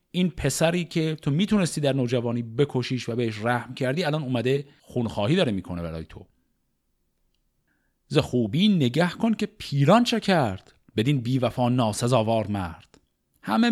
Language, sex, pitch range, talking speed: Persian, male, 110-155 Hz, 135 wpm